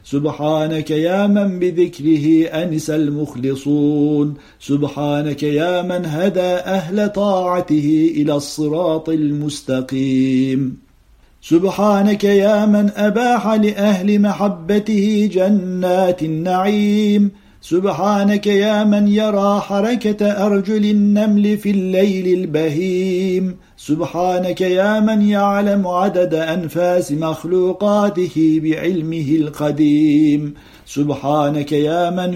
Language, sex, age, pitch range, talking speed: Turkish, male, 50-69, 155-200 Hz, 85 wpm